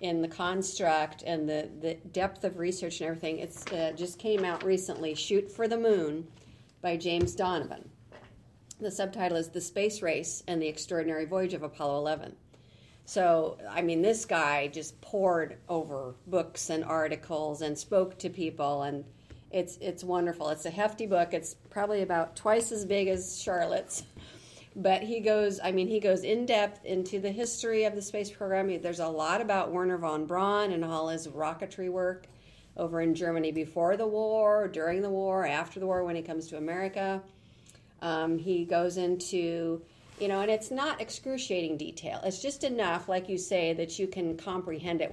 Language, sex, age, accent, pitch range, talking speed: English, female, 50-69, American, 160-195 Hz, 180 wpm